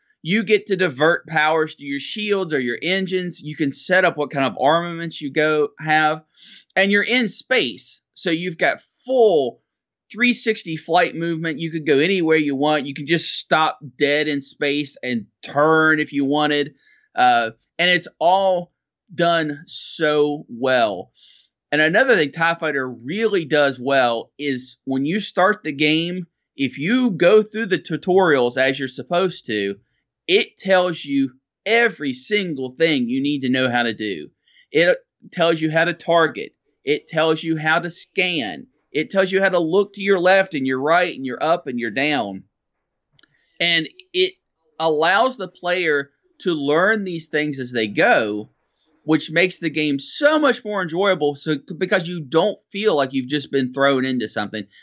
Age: 30-49